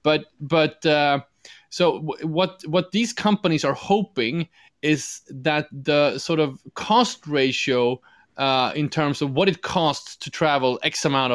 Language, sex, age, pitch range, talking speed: English, male, 20-39, 135-165 Hz, 155 wpm